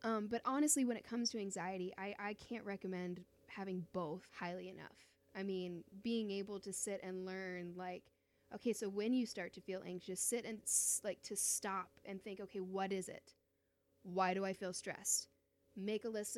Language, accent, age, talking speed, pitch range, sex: English, American, 10-29, 190 wpm, 185-230 Hz, female